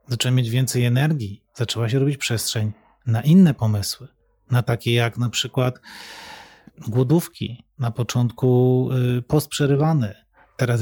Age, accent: 30-49, native